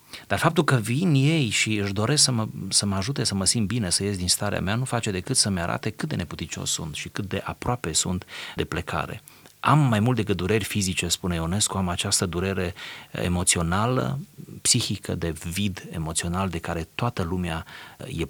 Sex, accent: male, native